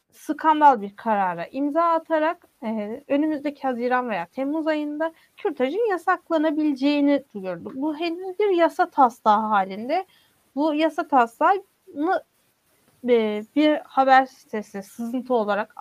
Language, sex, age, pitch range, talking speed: Turkish, female, 30-49, 245-320 Hz, 110 wpm